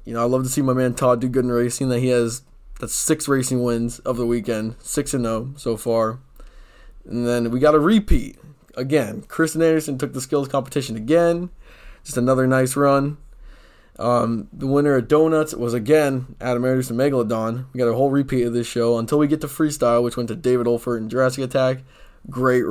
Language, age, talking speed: English, 20-39, 205 wpm